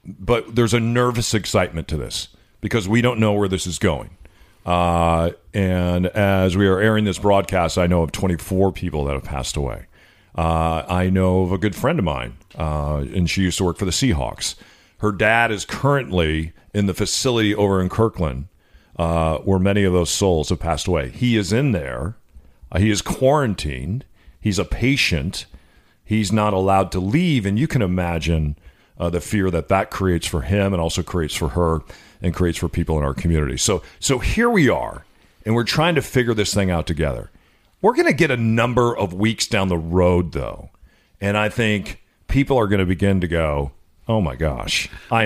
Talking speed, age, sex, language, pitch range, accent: 200 wpm, 40-59, male, English, 85-110 Hz, American